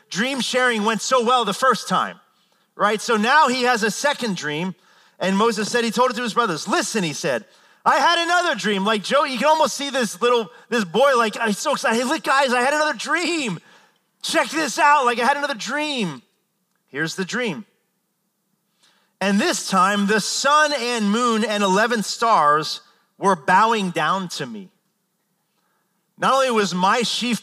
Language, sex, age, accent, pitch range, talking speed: English, male, 30-49, American, 180-240 Hz, 185 wpm